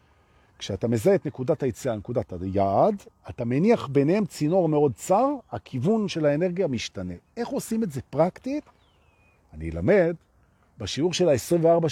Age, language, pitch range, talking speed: 50-69, Hebrew, 105-170 Hz, 135 wpm